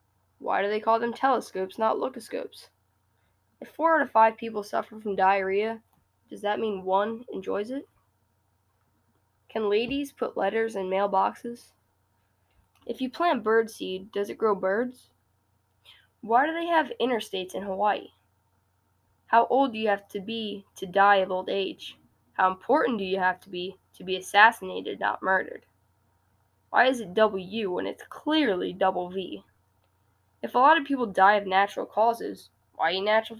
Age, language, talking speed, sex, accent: 10-29, English, 160 wpm, female, American